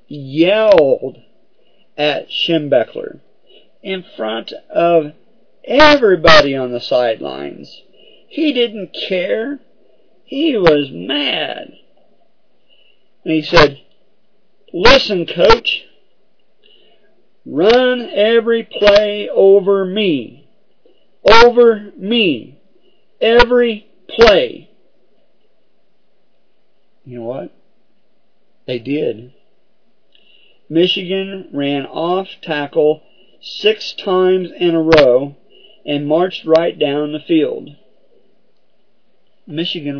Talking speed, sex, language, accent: 75 wpm, male, English, American